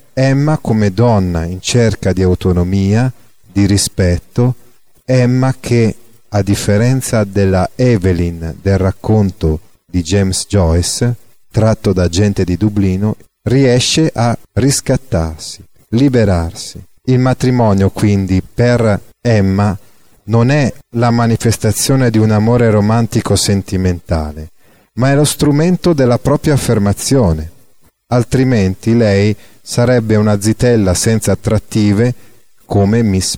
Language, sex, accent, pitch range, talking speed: Italian, male, native, 95-120 Hz, 105 wpm